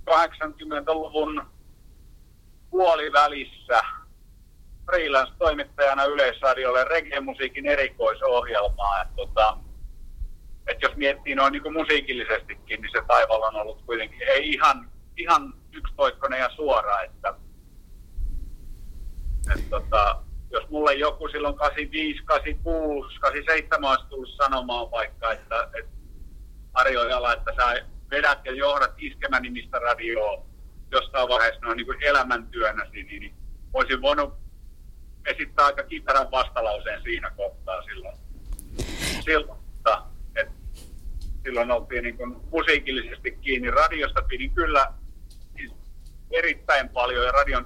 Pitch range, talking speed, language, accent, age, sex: 100-160 Hz, 100 wpm, Finnish, native, 50-69, male